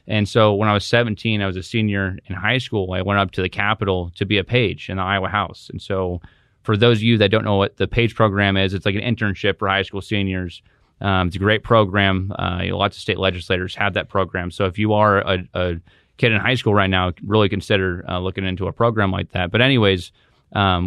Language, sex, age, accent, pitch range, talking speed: English, male, 30-49, American, 95-110 Hz, 245 wpm